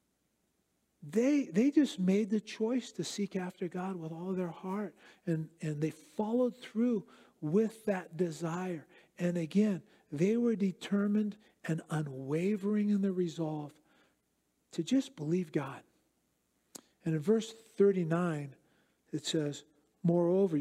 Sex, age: male, 50-69